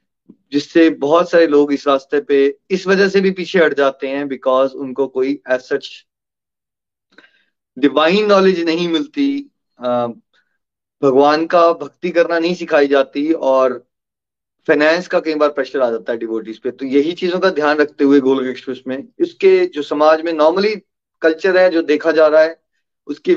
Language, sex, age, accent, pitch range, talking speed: Hindi, male, 30-49, native, 135-170 Hz, 160 wpm